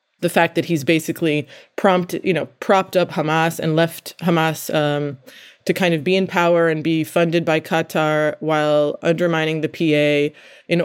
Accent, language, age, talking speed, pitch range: American, English, 20-39, 170 wpm, 155-185 Hz